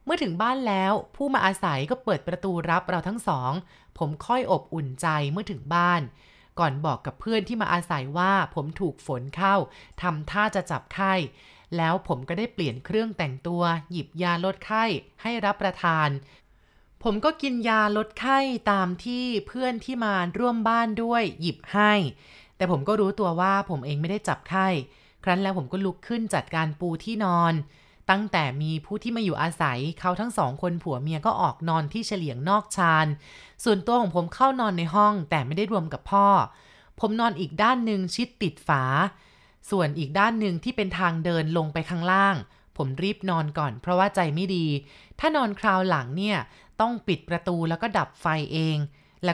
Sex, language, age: female, Thai, 20-39